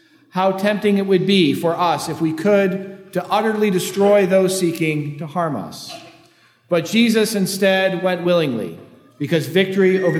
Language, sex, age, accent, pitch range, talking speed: English, male, 40-59, American, 150-200 Hz, 155 wpm